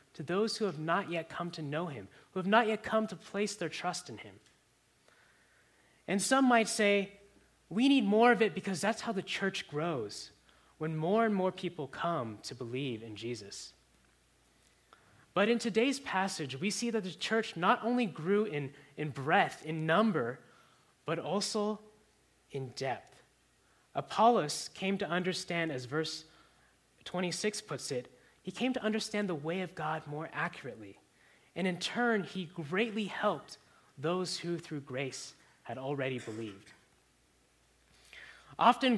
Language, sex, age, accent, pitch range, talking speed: English, male, 20-39, American, 155-215 Hz, 155 wpm